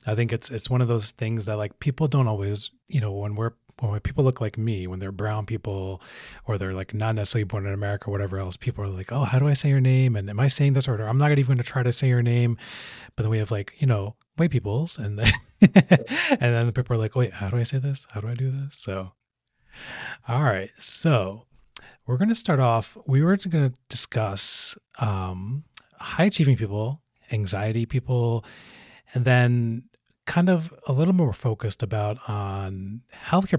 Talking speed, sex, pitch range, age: 215 wpm, male, 105-130 Hz, 30-49